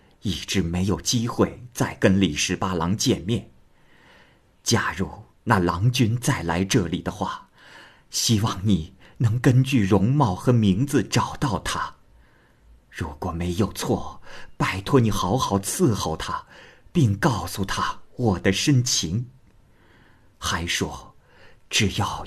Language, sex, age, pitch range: Chinese, male, 50-69, 95-120 Hz